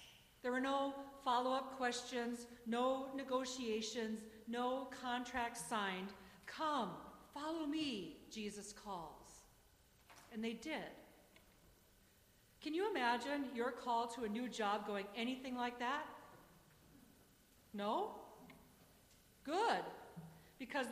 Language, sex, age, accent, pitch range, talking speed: English, female, 50-69, American, 210-260 Hz, 100 wpm